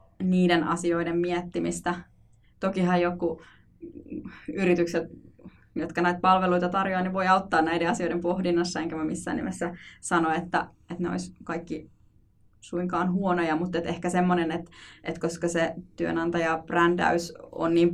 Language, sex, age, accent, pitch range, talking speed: Finnish, female, 20-39, native, 165-175 Hz, 135 wpm